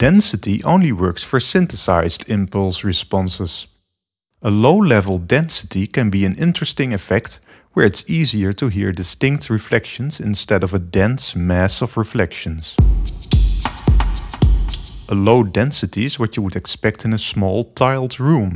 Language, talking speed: English, 140 wpm